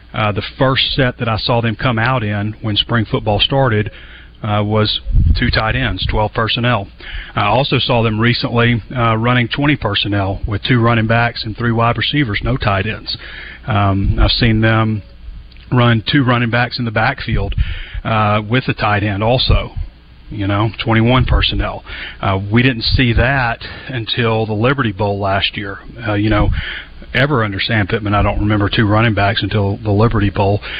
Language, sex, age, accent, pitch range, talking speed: English, male, 40-59, American, 105-120 Hz, 175 wpm